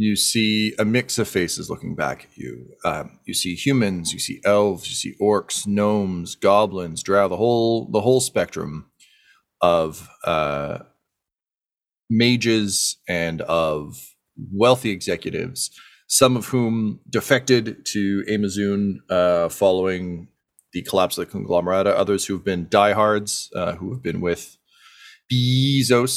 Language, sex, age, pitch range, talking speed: English, male, 30-49, 90-110 Hz, 135 wpm